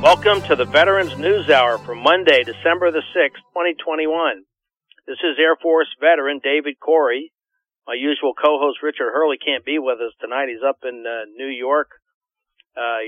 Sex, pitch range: male, 135-185 Hz